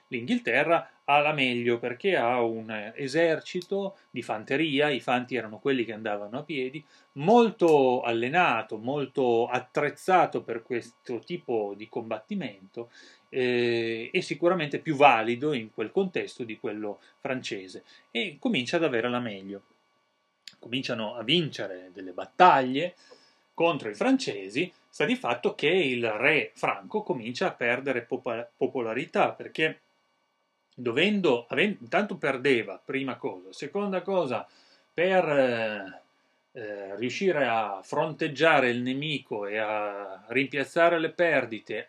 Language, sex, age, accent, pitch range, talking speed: Italian, male, 30-49, native, 115-165 Hz, 120 wpm